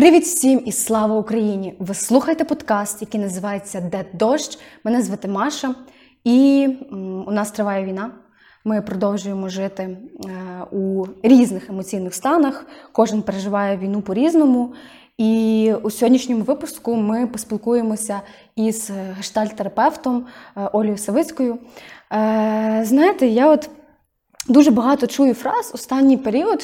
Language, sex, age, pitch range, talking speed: Ukrainian, female, 20-39, 215-275 Hz, 115 wpm